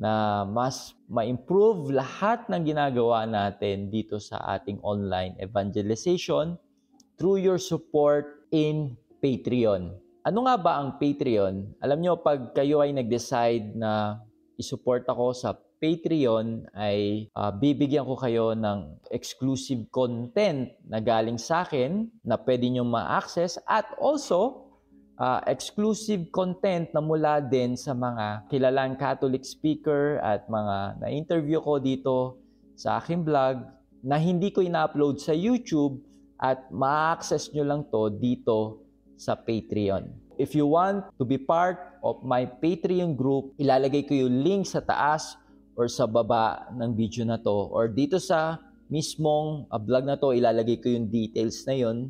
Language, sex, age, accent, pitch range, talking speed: Filipino, male, 20-39, native, 110-155 Hz, 140 wpm